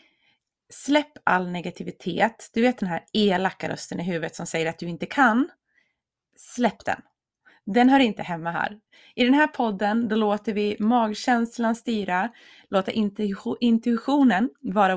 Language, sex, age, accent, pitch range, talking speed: Swedish, female, 30-49, native, 185-245 Hz, 140 wpm